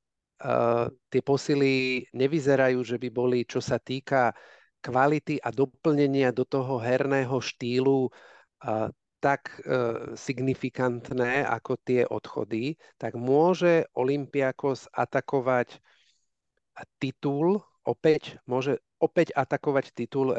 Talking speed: 100 wpm